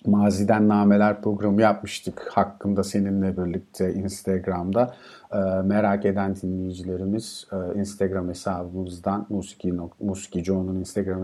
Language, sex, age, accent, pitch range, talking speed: Turkish, male, 50-69, native, 95-115 Hz, 85 wpm